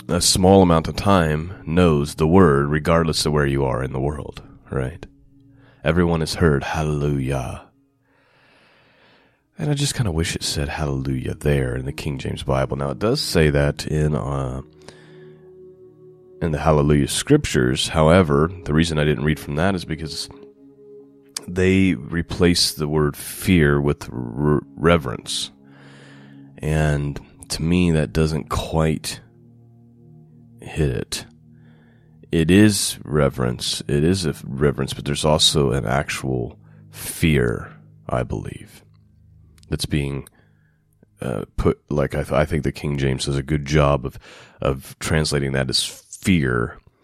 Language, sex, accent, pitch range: English, male, American, 70-95 Hz